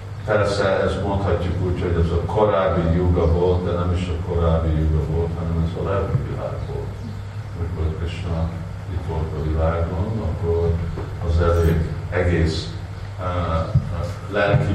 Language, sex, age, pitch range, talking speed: Hungarian, male, 50-69, 85-105 Hz, 140 wpm